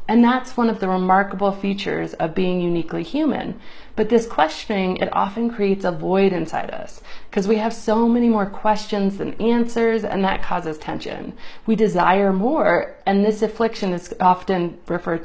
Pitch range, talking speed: 175-225 Hz, 170 wpm